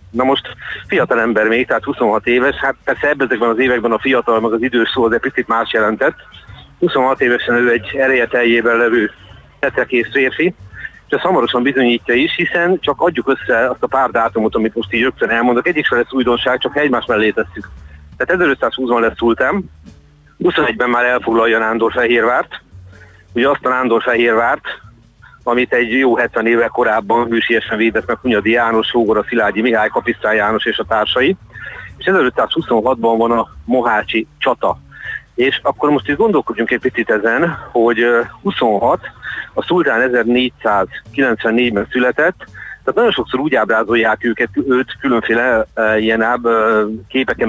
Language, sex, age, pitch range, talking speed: Hungarian, male, 40-59, 110-125 Hz, 155 wpm